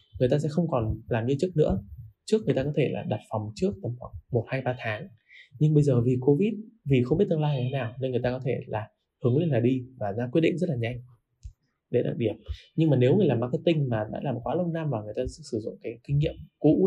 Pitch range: 115-145 Hz